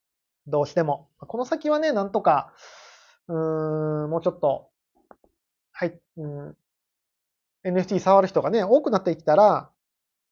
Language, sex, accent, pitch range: Japanese, male, native, 155-260 Hz